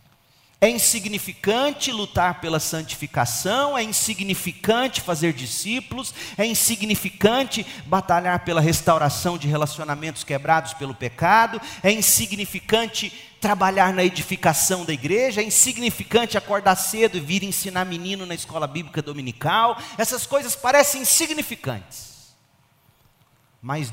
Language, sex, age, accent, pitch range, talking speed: Portuguese, male, 40-59, Brazilian, 115-190 Hz, 110 wpm